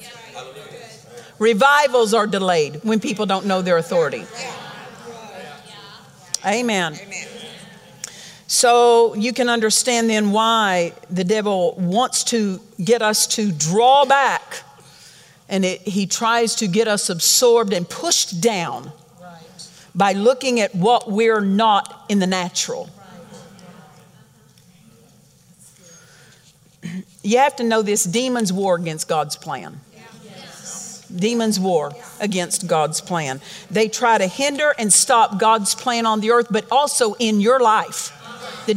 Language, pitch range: English, 180-240 Hz